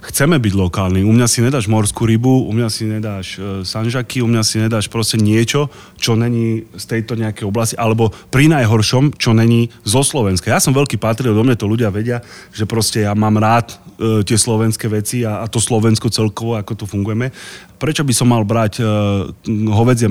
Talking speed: 190 wpm